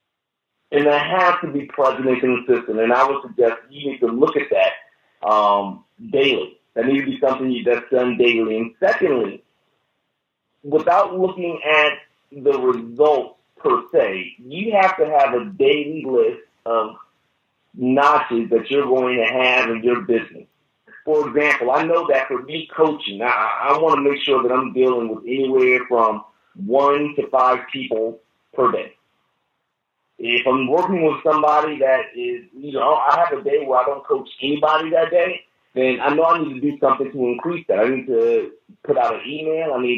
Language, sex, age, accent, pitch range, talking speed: English, male, 40-59, American, 120-155 Hz, 180 wpm